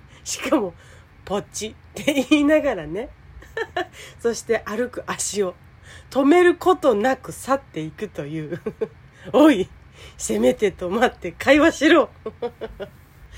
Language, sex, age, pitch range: Japanese, female, 40-59, 170-250 Hz